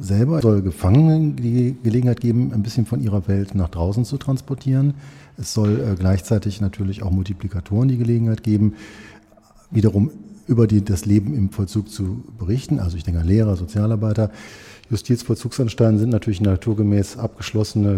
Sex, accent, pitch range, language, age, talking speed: male, German, 95-120 Hz, German, 40-59, 150 wpm